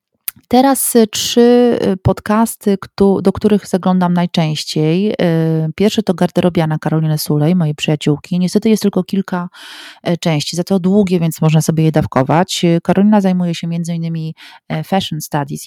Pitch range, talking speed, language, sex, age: 150-175 Hz, 130 wpm, Polish, female, 30-49